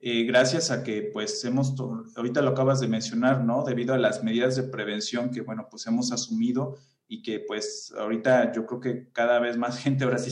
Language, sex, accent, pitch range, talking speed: Spanish, male, Mexican, 115-135 Hz, 215 wpm